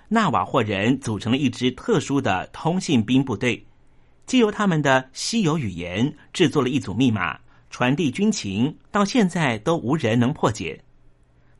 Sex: male